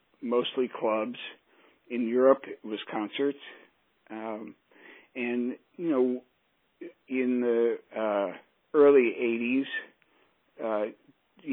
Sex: male